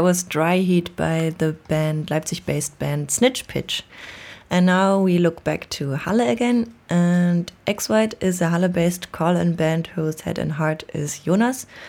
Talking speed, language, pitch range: 155 wpm, French, 160-195 Hz